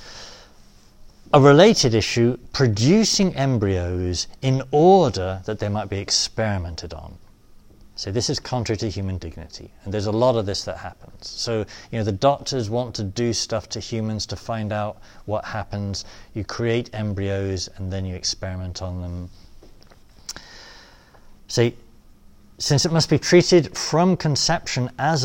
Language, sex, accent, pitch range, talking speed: English, male, British, 95-125 Hz, 145 wpm